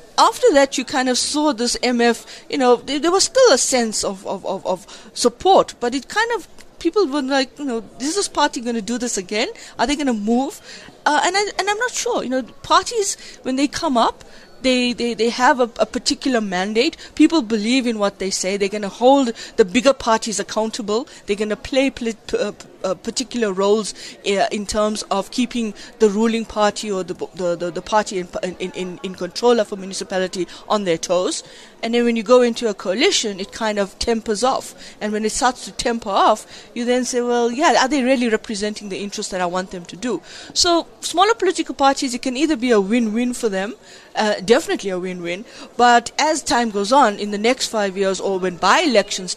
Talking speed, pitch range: 210 wpm, 205-265 Hz